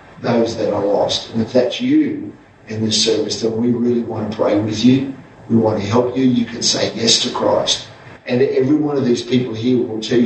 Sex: male